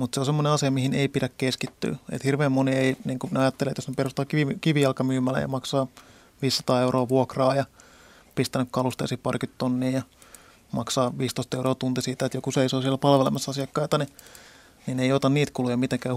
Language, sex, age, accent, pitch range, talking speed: Finnish, male, 30-49, native, 130-145 Hz, 180 wpm